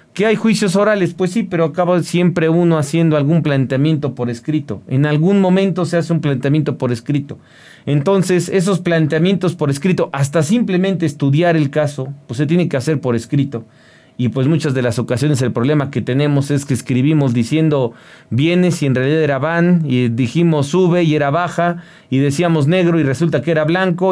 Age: 40-59